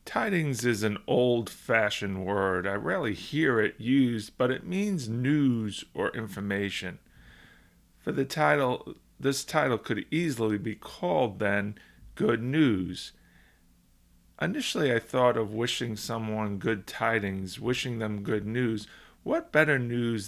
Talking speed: 125 wpm